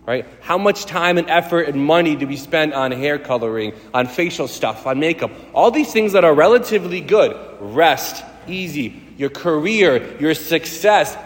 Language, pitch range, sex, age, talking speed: English, 115-180 Hz, male, 40-59, 170 wpm